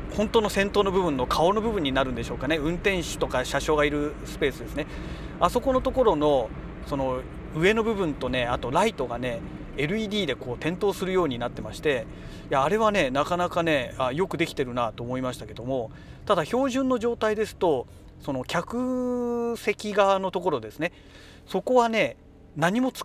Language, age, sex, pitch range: Japanese, 40-59, male, 130-200 Hz